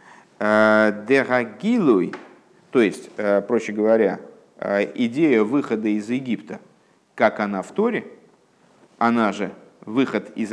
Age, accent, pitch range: 50-69, native, 105-145 Hz